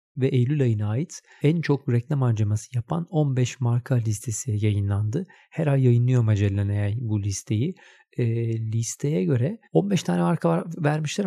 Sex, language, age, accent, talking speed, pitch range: male, Turkish, 40-59, native, 150 wpm, 115-150 Hz